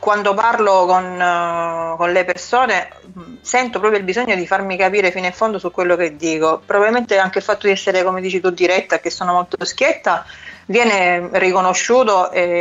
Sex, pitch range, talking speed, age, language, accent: female, 165-205 Hz, 185 wpm, 30-49, Italian, native